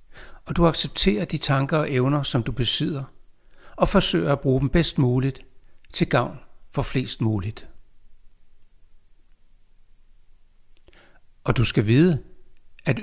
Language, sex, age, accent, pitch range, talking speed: Danish, male, 60-79, native, 110-155 Hz, 125 wpm